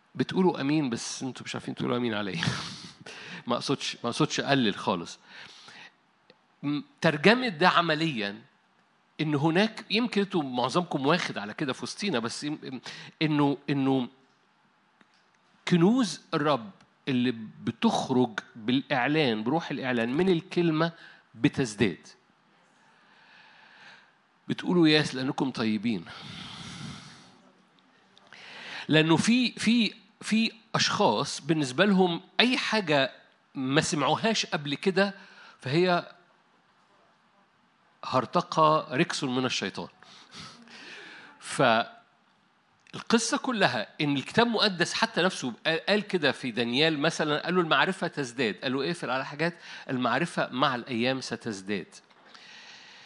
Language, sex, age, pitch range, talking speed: Arabic, male, 50-69, 135-185 Hz, 100 wpm